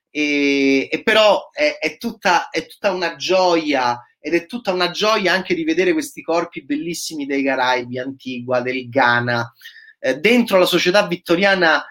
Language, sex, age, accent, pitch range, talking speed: Italian, male, 30-49, native, 155-250 Hz, 155 wpm